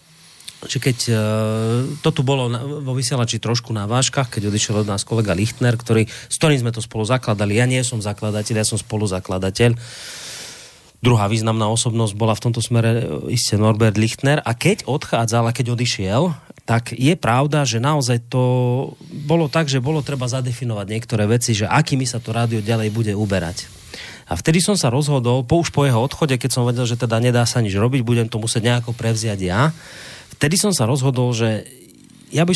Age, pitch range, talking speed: 30-49, 110-130 Hz, 185 wpm